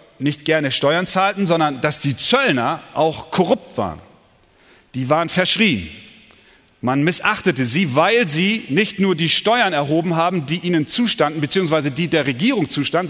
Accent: German